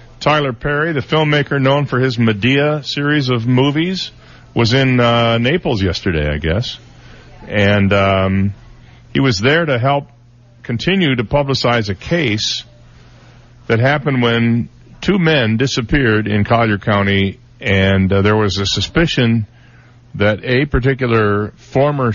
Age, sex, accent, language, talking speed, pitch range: 50-69, male, American, English, 135 wpm, 105-125 Hz